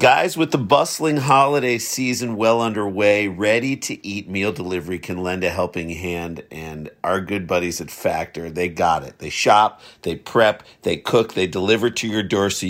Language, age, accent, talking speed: English, 50-69, American, 185 wpm